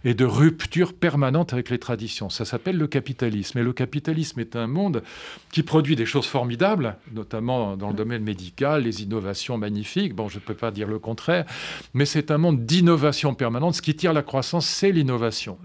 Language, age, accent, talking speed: French, 40-59, French, 195 wpm